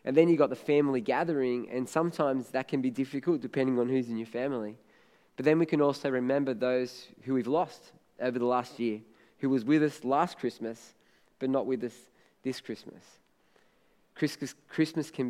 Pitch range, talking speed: 125-145 Hz, 185 wpm